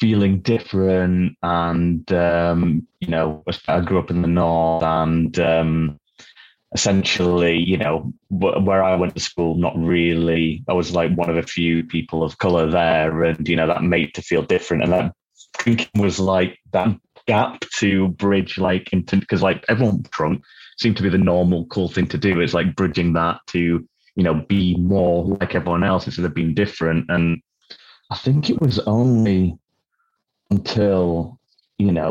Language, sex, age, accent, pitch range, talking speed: English, male, 20-39, British, 85-100 Hz, 170 wpm